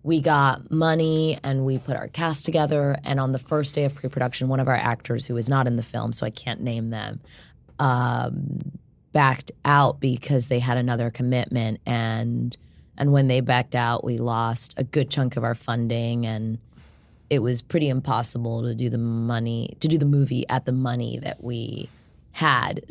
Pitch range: 120-145 Hz